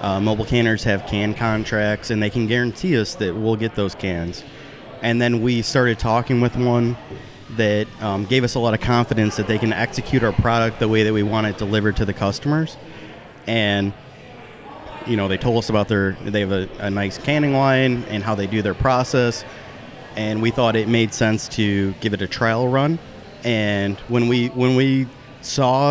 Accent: American